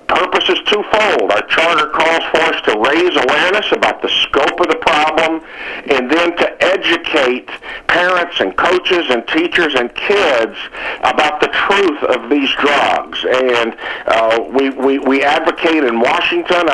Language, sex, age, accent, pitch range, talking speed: English, male, 50-69, American, 125-170 Hz, 150 wpm